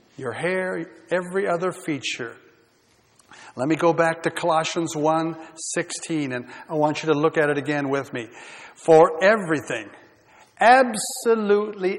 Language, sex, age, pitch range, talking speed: English, male, 60-79, 150-205 Hz, 135 wpm